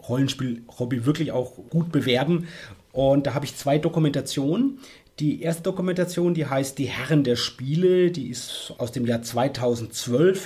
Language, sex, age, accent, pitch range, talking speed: German, male, 30-49, German, 135-165 Hz, 150 wpm